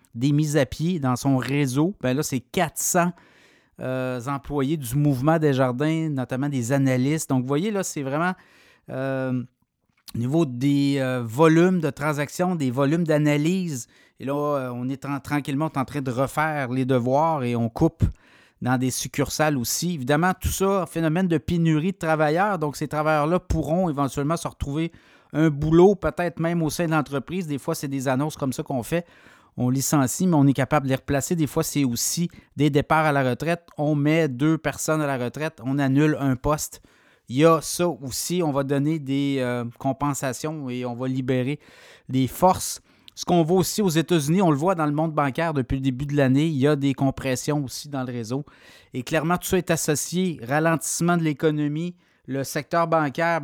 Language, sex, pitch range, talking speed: French, male, 135-160 Hz, 195 wpm